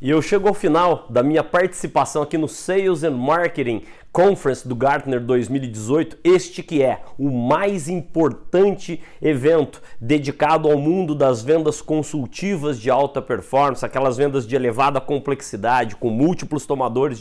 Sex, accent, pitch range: male, Brazilian, 130-160 Hz